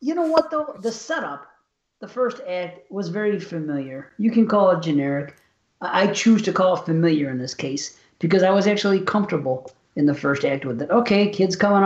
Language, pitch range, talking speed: English, 150-200 Hz, 200 wpm